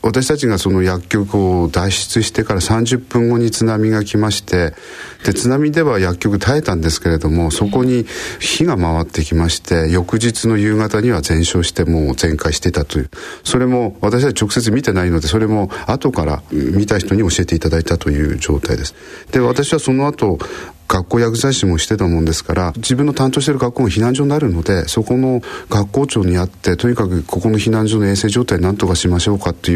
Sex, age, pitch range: male, 40-59, 85-115 Hz